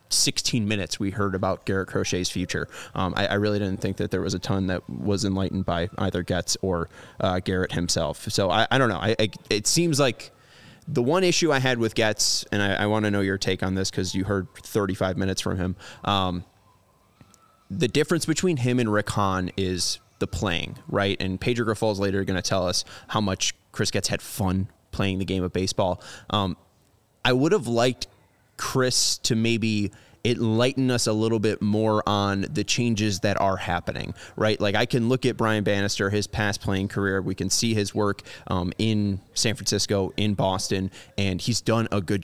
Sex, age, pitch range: male, 20-39, 95-115 Hz